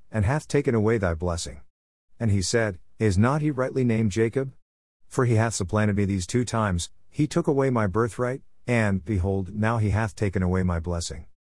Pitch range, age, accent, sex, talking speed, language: 90-120 Hz, 50-69, American, male, 190 wpm, English